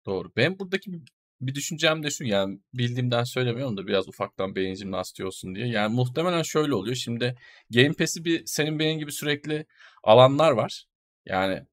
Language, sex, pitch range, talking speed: Turkish, male, 120-160 Hz, 160 wpm